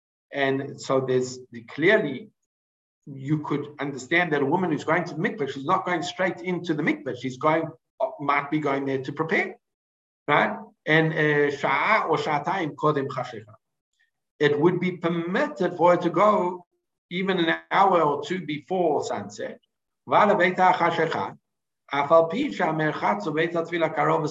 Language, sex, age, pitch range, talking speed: English, male, 60-79, 145-195 Hz, 125 wpm